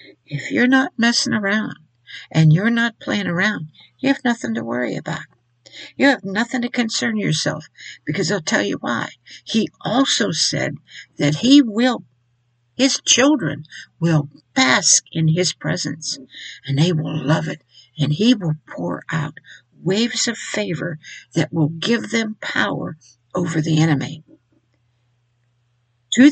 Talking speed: 140 wpm